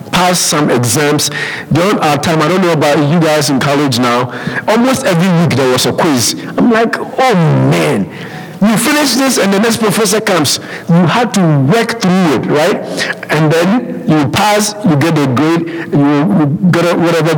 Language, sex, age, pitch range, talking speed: English, male, 50-69, 150-200 Hz, 185 wpm